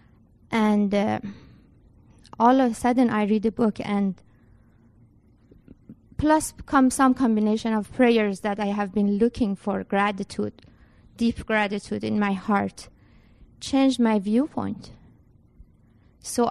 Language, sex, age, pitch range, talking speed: English, female, 20-39, 200-235 Hz, 120 wpm